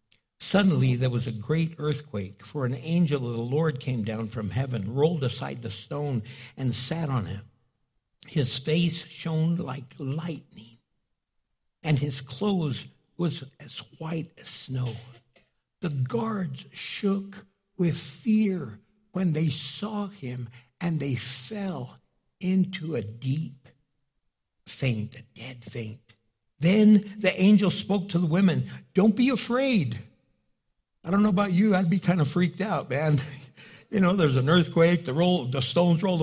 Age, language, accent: 60-79, English, American